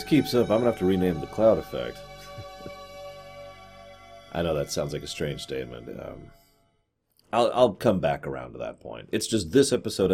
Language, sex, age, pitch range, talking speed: English, male, 40-59, 80-110 Hz, 185 wpm